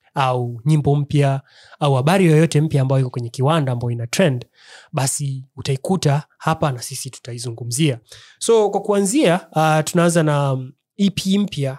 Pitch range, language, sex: 130-155 Hz, Swahili, male